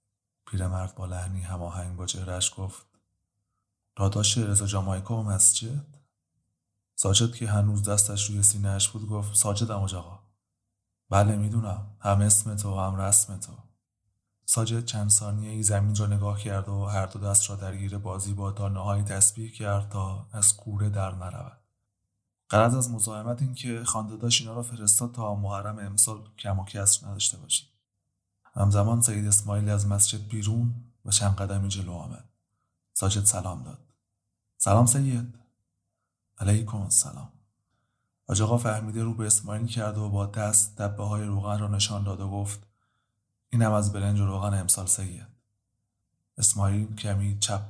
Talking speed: 145 wpm